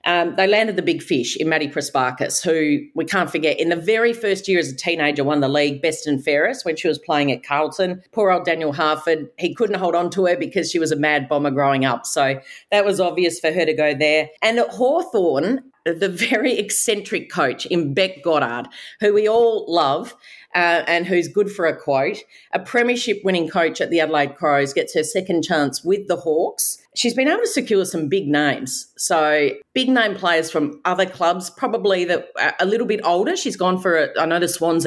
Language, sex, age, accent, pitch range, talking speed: English, female, 40-59, Australian, 150-190 Hz, 215 wpm